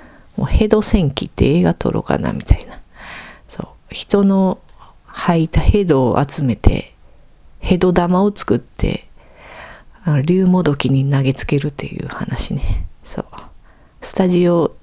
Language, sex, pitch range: Japanese, female, 135-190 Hz